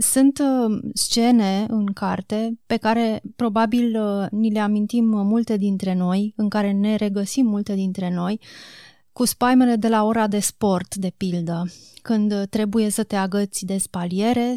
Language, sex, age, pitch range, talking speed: Romanian, female, 20-39, 195-225 Hz, 150 wpm